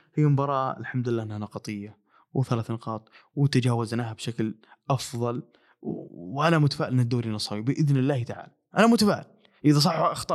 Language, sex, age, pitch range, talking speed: Arabic, male, 20-39, 125-150 Hz, 140 wpm